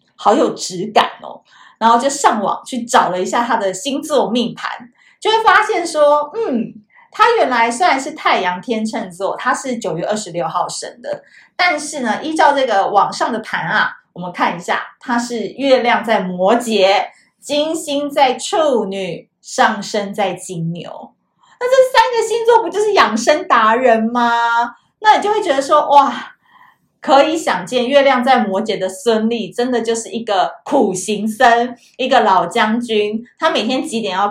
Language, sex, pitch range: Chinese, female, 210-285 Hz